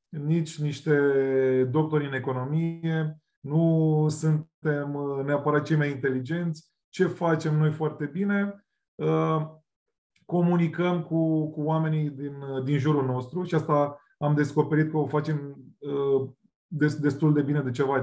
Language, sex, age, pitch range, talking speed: Romanian, male, 20-39, 135-155 Hz, 120 wpm